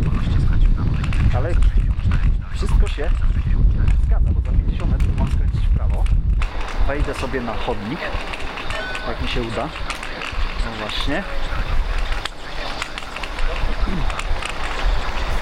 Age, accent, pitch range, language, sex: 40-59, native, 75-95 Hz, Polish, male